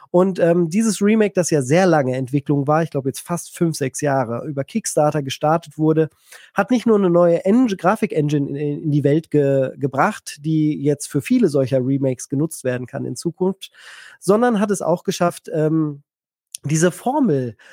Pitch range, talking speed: 150-200 Hz, 180 wpm